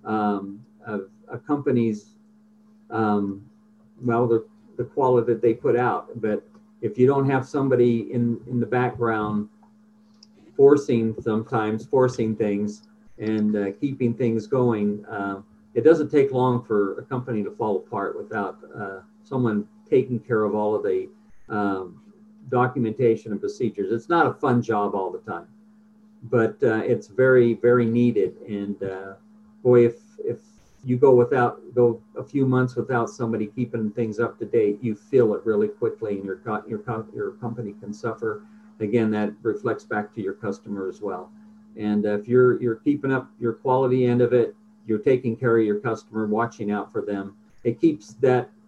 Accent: American